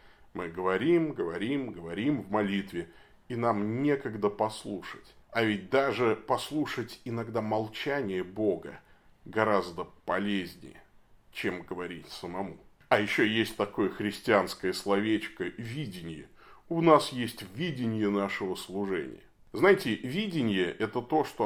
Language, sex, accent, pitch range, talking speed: Russian, male, native, 105-140 Hz, 110 wpm